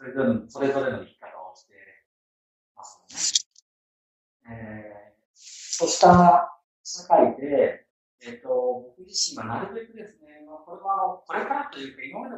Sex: male